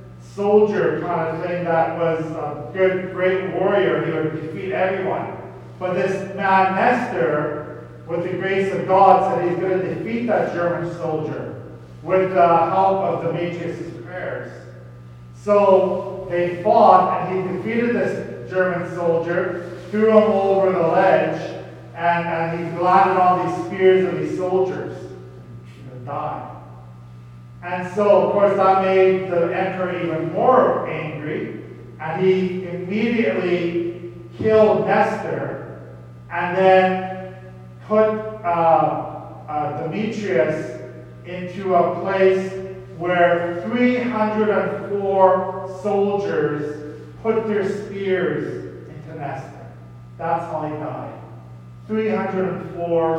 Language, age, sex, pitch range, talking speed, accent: English, 40-59, male, 150-190 Hz, 115 wpm, American